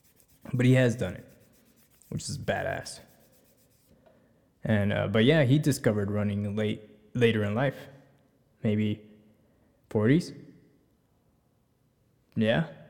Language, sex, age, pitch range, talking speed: English, male, 20-39, 110-135 Hz, 100 wpm